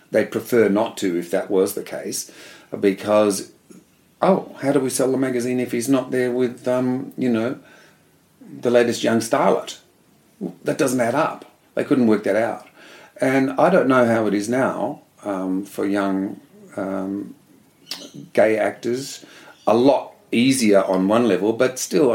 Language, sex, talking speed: English, male, 165 wpm